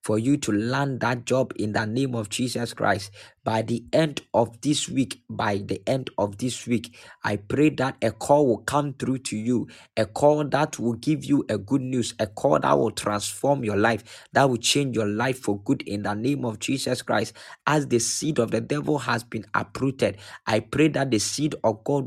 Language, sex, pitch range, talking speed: English, male, 110-135 Hz, 215 wpm